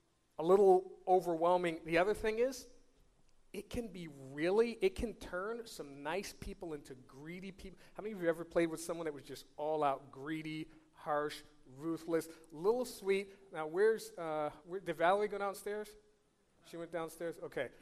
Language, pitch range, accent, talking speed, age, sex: English, 165-215 Hz, American, 170 wpm, 30-49, male